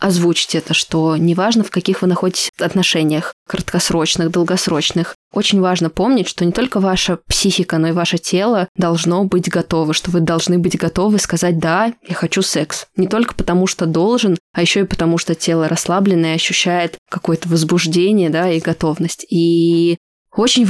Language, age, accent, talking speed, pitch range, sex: Russian, 20-39, native, 170 wpm, 170-185 Hz, female